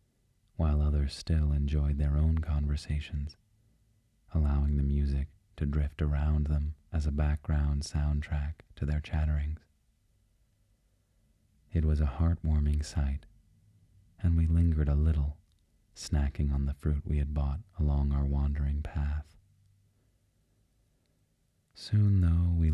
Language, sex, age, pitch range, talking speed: English, male, 30-49, 75-90 Hz, 120 wpm